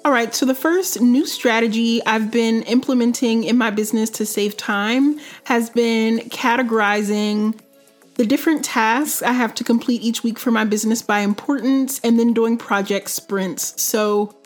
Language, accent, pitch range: English, American, 215-245 Hz